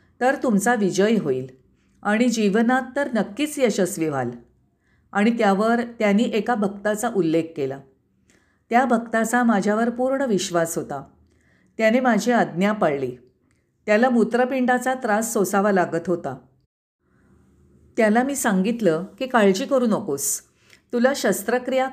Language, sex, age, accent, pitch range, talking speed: Marathi, female, 50-69, native, 175-240 Hz, 115 wpm